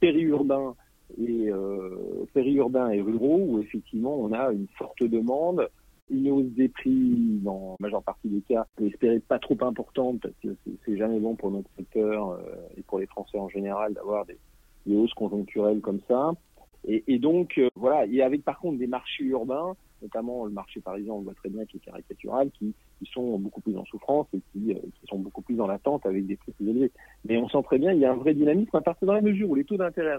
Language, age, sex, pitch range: French, 40-59, male, 105-140 Hz